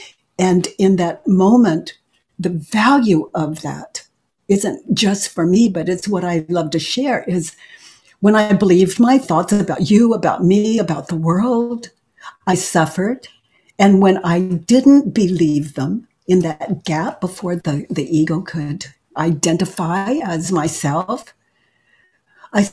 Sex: female